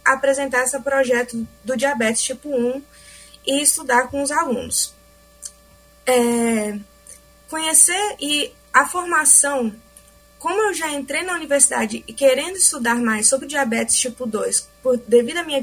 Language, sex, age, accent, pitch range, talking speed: Portuguese, female, 20-39, Brazilian, 245-310 Hz, 135 wpm